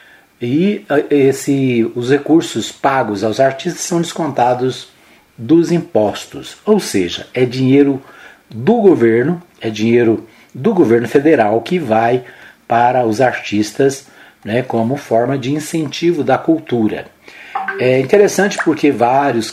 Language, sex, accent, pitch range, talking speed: Portuguese, male, Brazilian, 115-155 Hz, 115 wpm